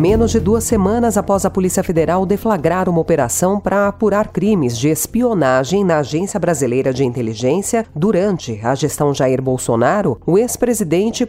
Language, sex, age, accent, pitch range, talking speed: Portuguese, female, 40-59, Brazilian, 145-215 Hz, 150 wpm